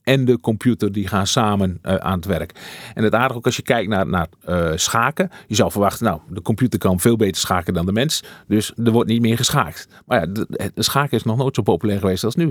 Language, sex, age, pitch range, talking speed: Dutch, male, 40-59, 100-125 Hz, 255 wpm